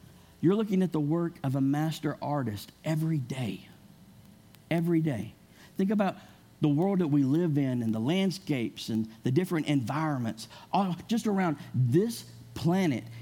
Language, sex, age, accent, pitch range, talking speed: English, male, 50-69, American, 125-180 Hz, 150 wpm